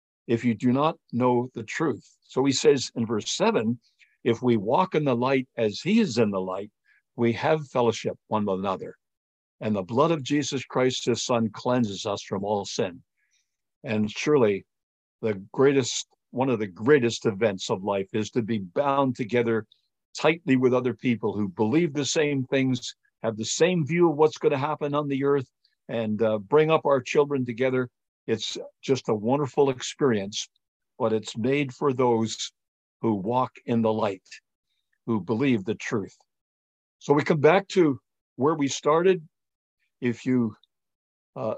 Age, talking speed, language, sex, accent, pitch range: 60-79, 170 wpm, English, male, American, 110-140 Hz